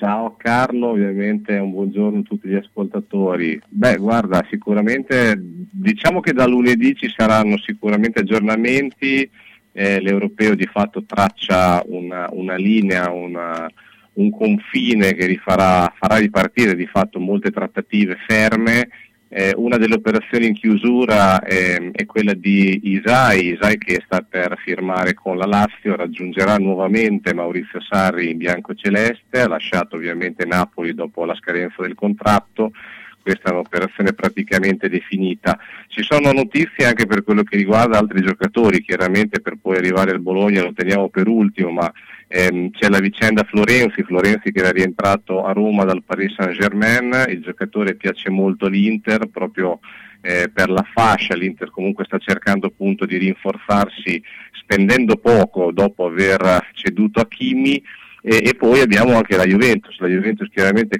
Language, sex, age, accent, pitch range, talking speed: Italian, male, 40-59, native, 95-110 Hz, 145 wpm